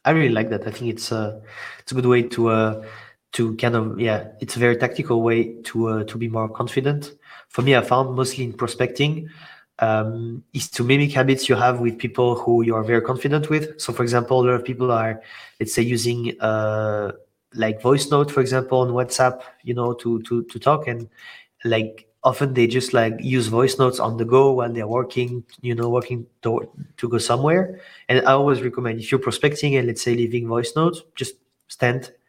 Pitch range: 115-130 Hz